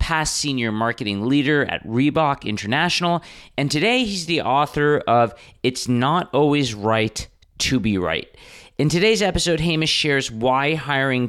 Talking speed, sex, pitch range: 145 wpm, male, 110-150 Hz